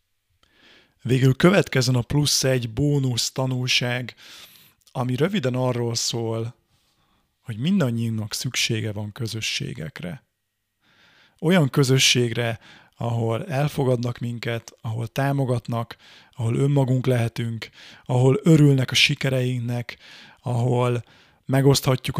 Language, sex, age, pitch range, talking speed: Hungarian, male, 30-49, 120-135 Hz, 85 wpm